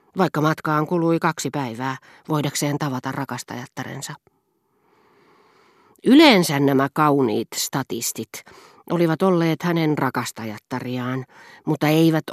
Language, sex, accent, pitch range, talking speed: Finnish, female, native, 135-170 Hz, 90 wpm